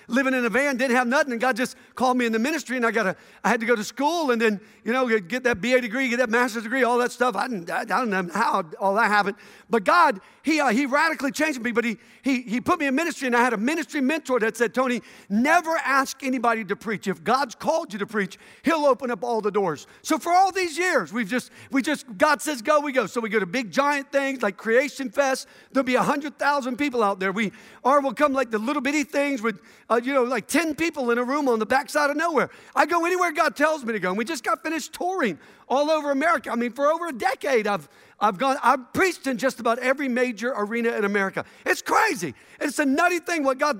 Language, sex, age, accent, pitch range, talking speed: English, male, 50-69, American, 235-290 Hz, 260 wpm